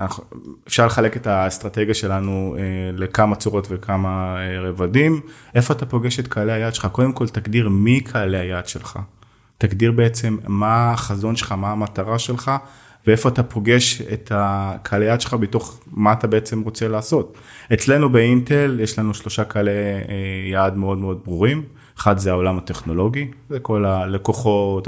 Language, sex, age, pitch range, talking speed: Hebrew, male, 20-39, 100-125 Hz, 145 wpm